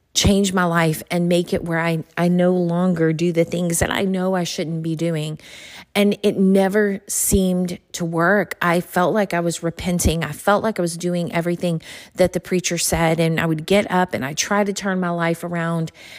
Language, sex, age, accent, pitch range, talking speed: English, female, 40-59, American, 165-185 Hz, 210 wpm